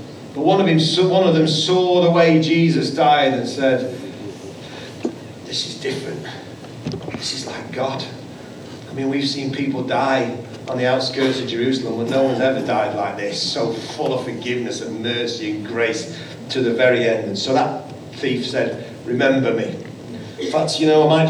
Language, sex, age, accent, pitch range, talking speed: English, male, 40-59, British, 125-145 Hz, 170 wpm